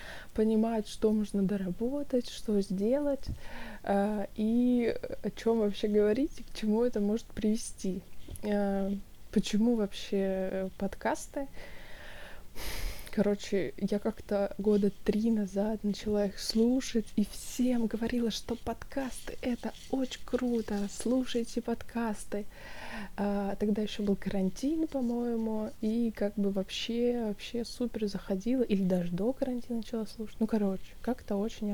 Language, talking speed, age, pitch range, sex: Russian, 115 wpm, 20-39, 200-235 Hz, female